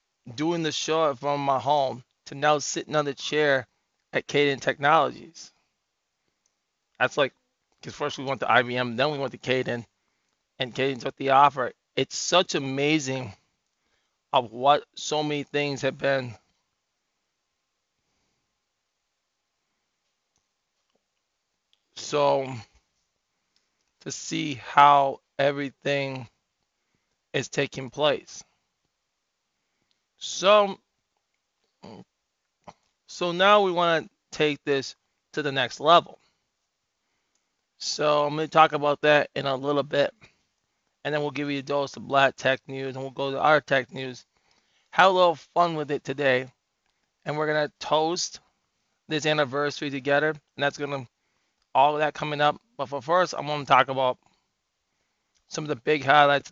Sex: male